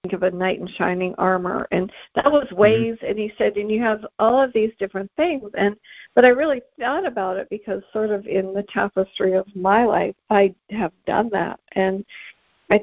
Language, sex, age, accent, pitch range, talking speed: English, female, 50-69, American, 190-220 Hz, 200 wpm